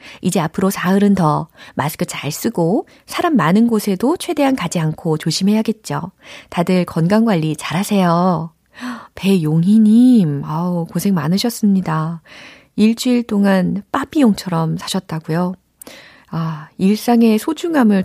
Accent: native